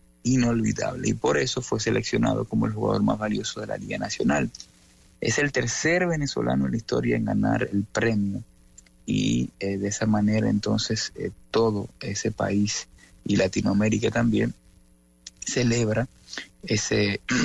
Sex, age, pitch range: male, 30-49, 100-110 Hz